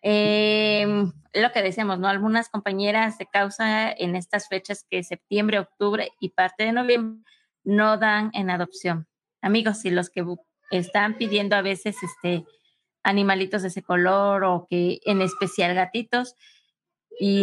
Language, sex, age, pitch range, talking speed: Spanish, female, 20-39, 185-220 Hz, 150 wpm